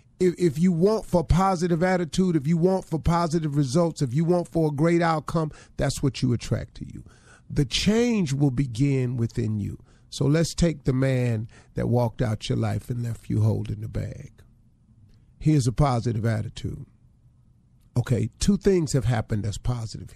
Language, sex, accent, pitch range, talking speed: English, male, American, 120-155 Hz, 175 wpm